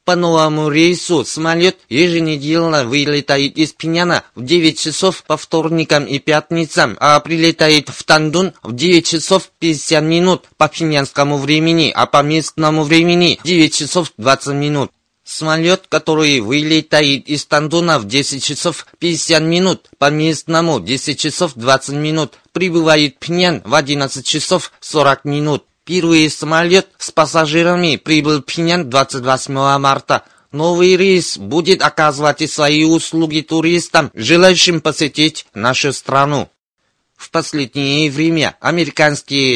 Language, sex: Russian, male